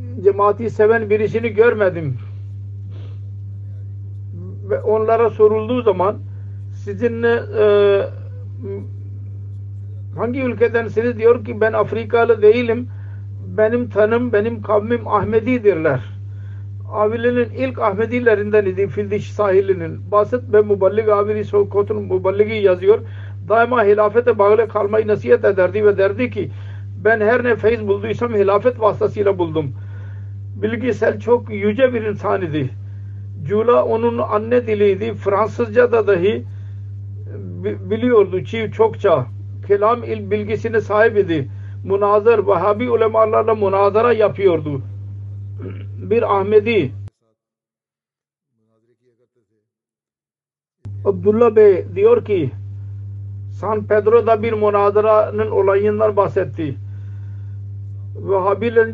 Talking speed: 90 wpm